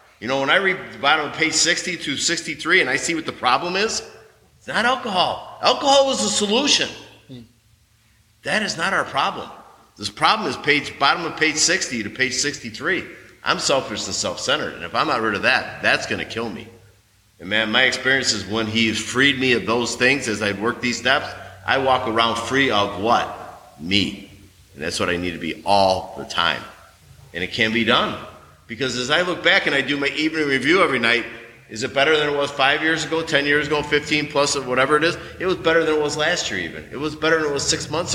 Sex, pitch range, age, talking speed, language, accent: male, 110-150 Hz, 30-49, 230 wpm, English, American